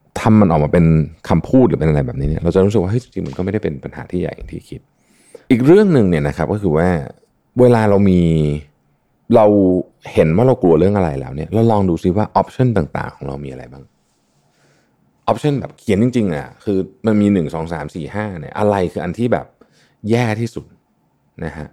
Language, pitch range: Thai, 80-110 Hz